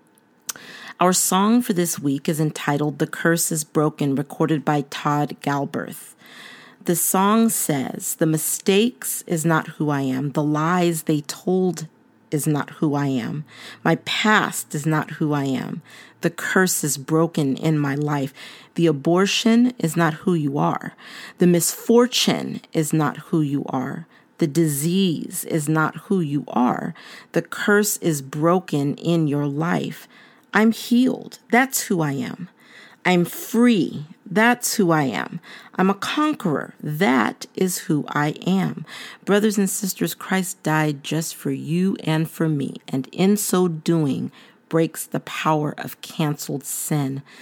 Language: English